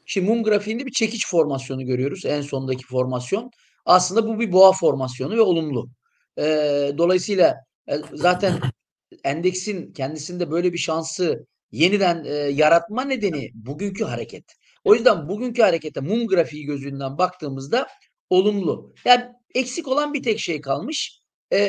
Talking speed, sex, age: 135 wpm, male, 50-69